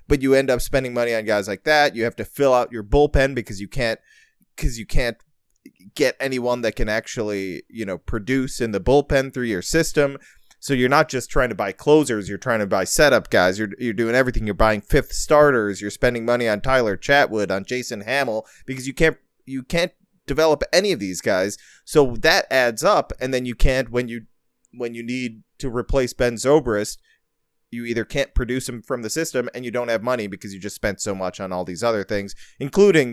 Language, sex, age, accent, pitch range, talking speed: English, male, 30-49, American, 110-145 Hz, 215 wpm